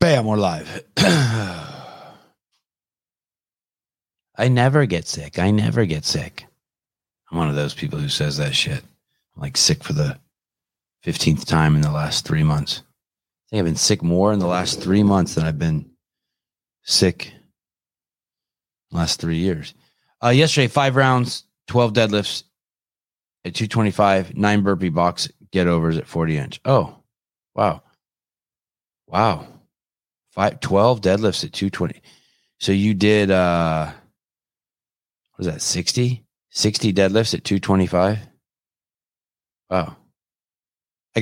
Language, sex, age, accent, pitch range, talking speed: English, male, 30-49, American, 85-105 Hz, 130 wpm